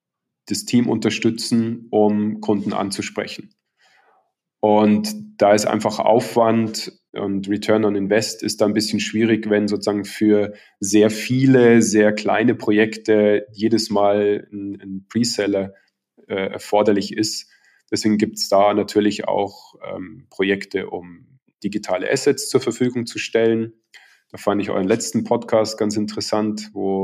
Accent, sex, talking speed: German, male, 135 wpm